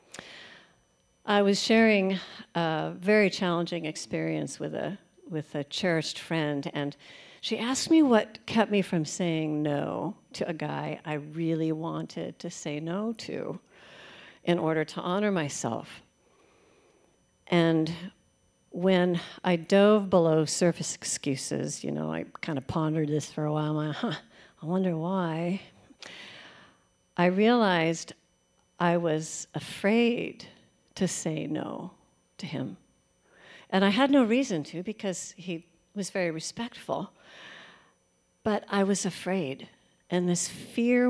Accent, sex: American, female